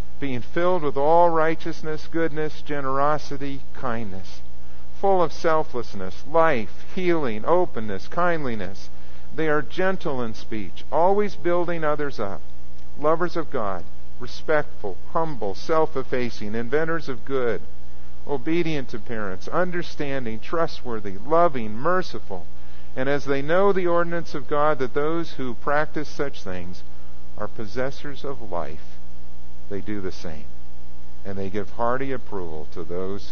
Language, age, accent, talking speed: English, 50-69, American, 125 wpm